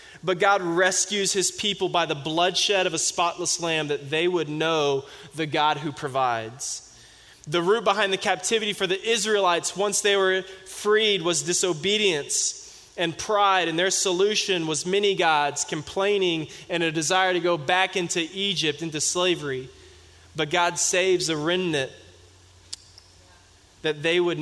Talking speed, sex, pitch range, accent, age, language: 150 wpm, male, 145-175 Hz, American, 20-39, English